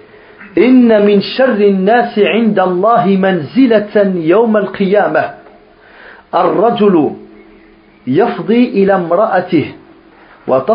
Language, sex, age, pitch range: French, male, 40-59, 155-205 Hz